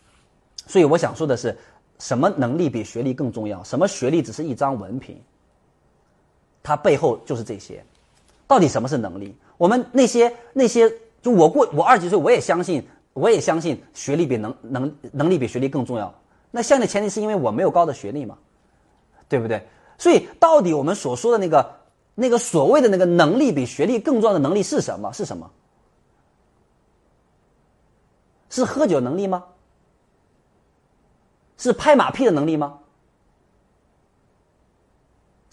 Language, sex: Chinese, male